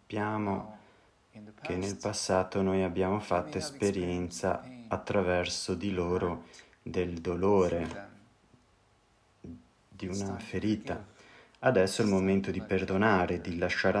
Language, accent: Italian, native